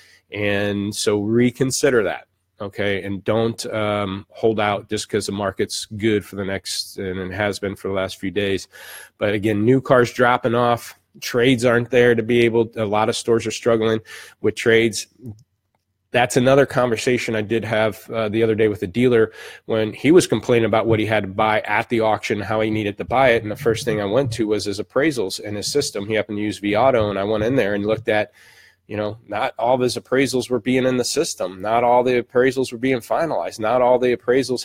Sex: male